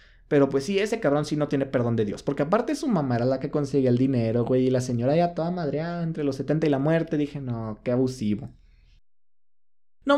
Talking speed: 235 wpm